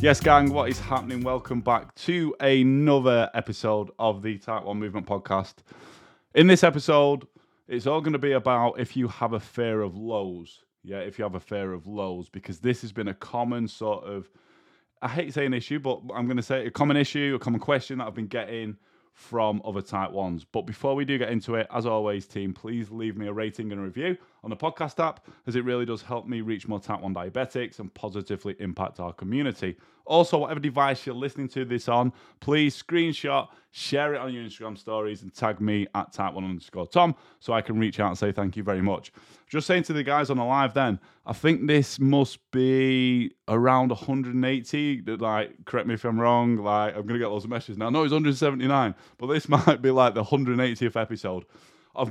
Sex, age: male, 20-39